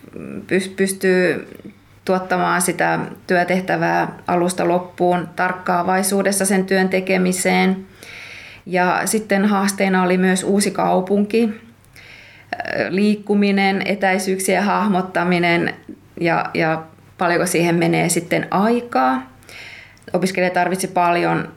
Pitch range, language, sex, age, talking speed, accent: 160-185 Hz, Finnish, female, 20-39, 85 wpm, native